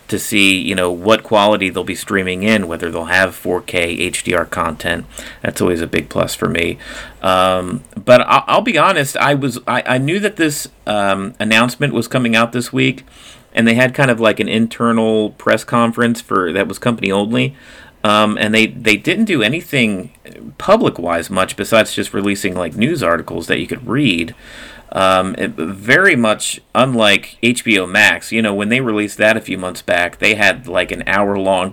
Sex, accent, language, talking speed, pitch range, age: male, American, English, 185 wpm, 100-115 Hz, 30-49